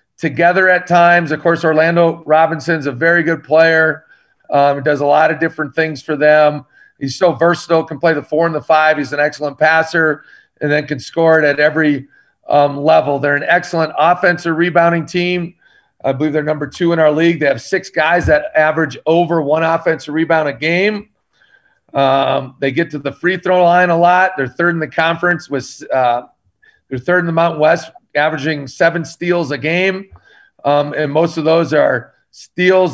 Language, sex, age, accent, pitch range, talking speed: English, male, 40-59, American, 150-175 Hz, 190 wpm